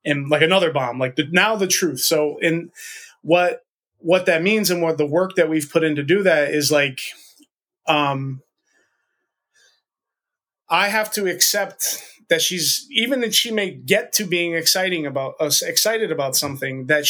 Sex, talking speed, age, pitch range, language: male, 170 wpm, 20-39, 150-180 Hz, English